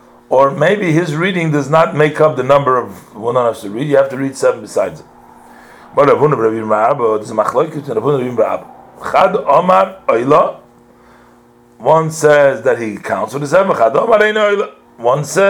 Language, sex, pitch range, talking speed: English, male, 105-160 Hz, 125 wpm